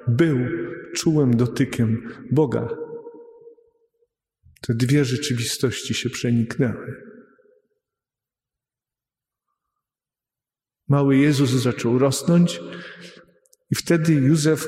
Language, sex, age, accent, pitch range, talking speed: Polish, male, 40-59, native, 125-155 Hz, 65 wpm